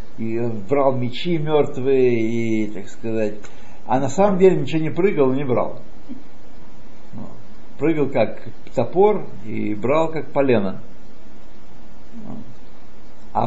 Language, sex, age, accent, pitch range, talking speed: Russian, male, 60-79, native, 125-180 Hz, 105 wpm